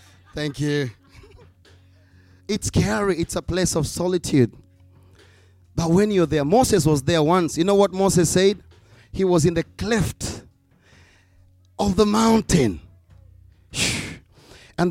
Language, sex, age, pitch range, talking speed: English, male, 30-49, 105-175 Hz, 125 wpm